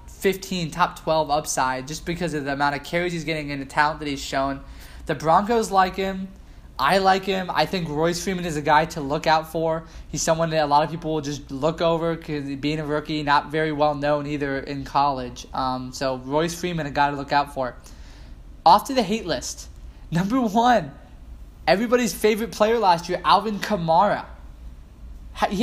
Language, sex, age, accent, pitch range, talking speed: English, male, 20-39, American, 145-190 Hz, 195 wpm